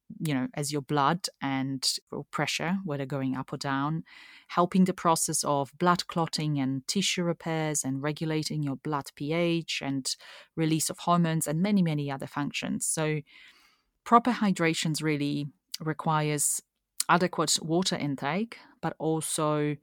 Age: 30-49